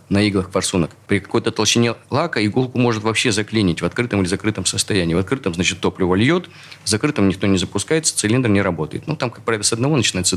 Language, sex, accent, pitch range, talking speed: Russian, male, native, 100-125 Hz, 210 wpm